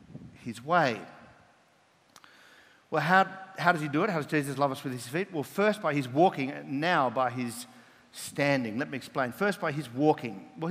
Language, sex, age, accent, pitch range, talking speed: English, male, 50-69, Australian, 145-195 Hz, 195 wpm